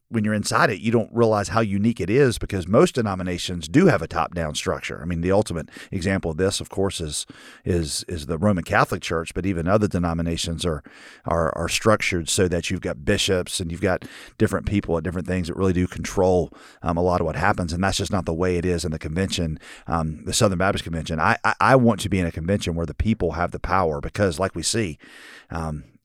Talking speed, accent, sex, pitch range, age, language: 235 wpm, American, male, 85-105 Hz, 40-59, English